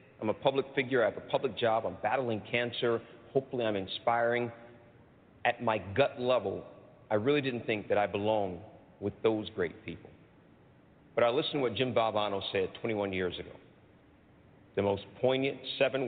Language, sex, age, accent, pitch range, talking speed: English, male, 50-69, American, 105-135 Hz, 170 wpm